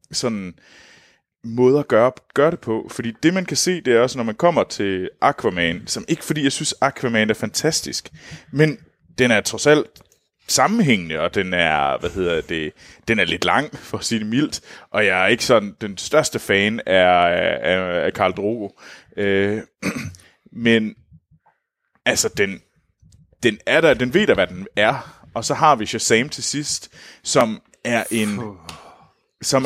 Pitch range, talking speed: 105-145 Hz, 175 wpm